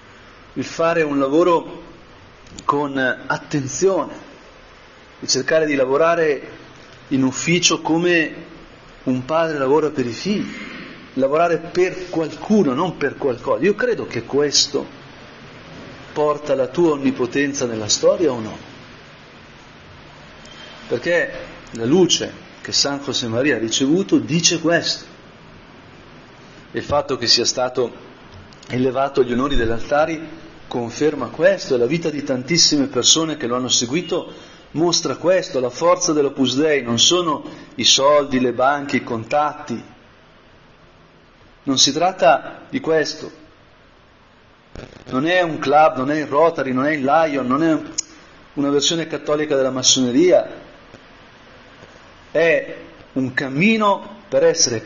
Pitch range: 130-165 Hz